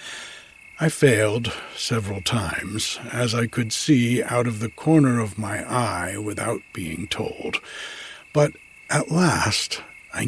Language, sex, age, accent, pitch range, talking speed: English, male, 60-79, American, 105-130 Hz, 130 wpm